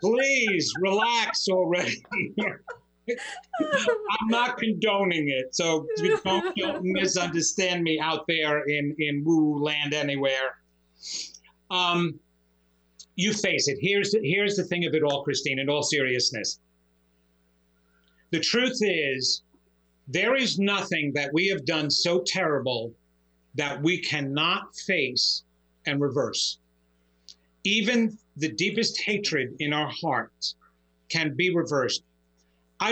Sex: male